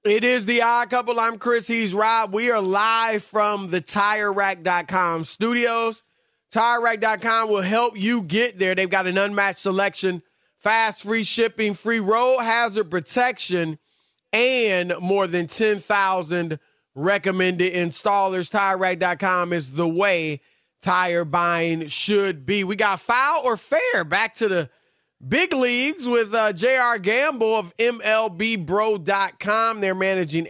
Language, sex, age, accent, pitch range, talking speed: English, male, 30-49, American, 175-225 Hz, 130 wpm